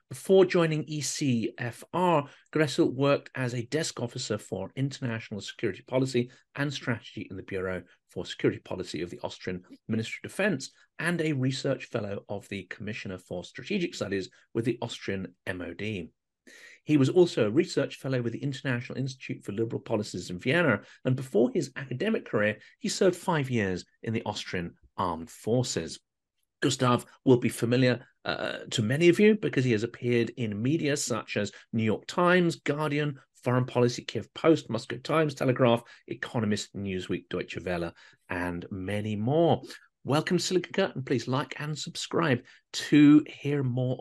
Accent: British